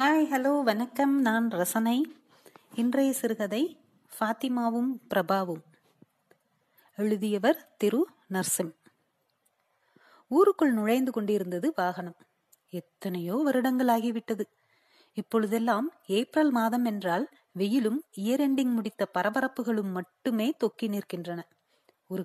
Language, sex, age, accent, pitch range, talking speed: Tamil, female, 30-49, native, 205-270 Hz, 75 wpm